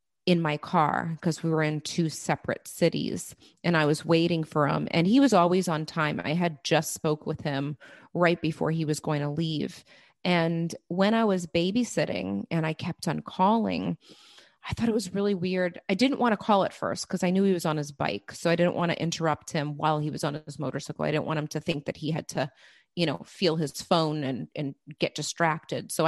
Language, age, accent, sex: English, 30-49, American, female